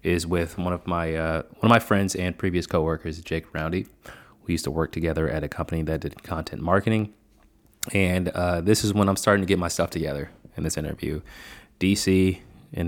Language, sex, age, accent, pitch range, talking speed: English, male, 20-39, American, 80-95 Hz, 205 wpm